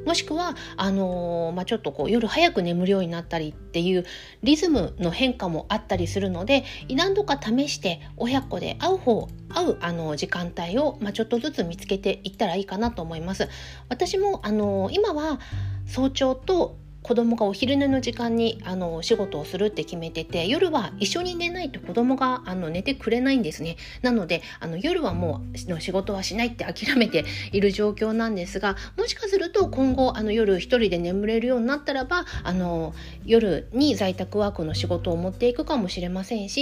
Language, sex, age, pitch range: Japanese, female, 40-59, 175-255 Hz